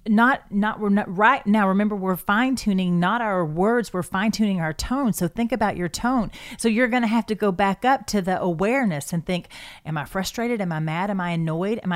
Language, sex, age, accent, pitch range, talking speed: English, female, 40-59, American, 180-230 Hz, 235 wpm